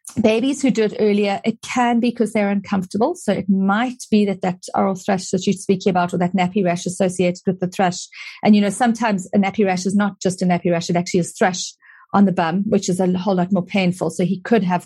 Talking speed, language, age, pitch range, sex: 250 wpm, English, 40-59, 180-215 Hz, female